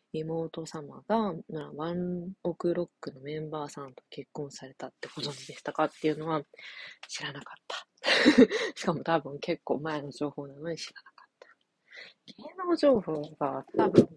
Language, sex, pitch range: Japanese, female, 150-230 Hz